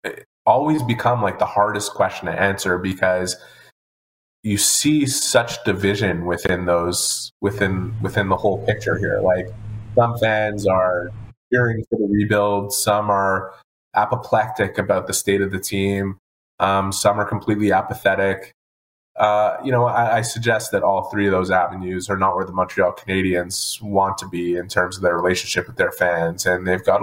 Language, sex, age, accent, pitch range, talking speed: English, male, 20-39, American, 90-105 Hz, 170 wpm